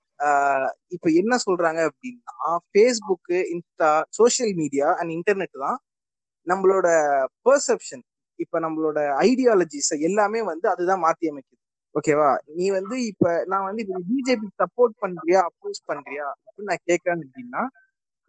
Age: 20-39